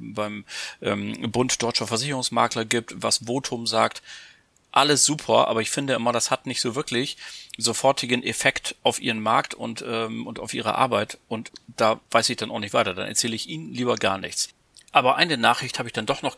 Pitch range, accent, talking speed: 115-140 Hz, German, 200 wpm